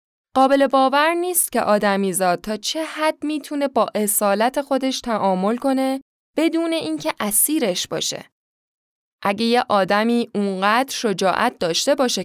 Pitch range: 195-270 Hz